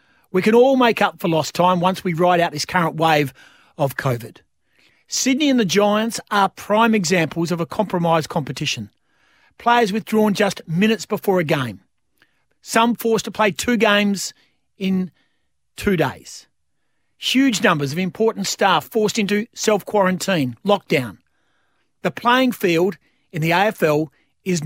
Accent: Australian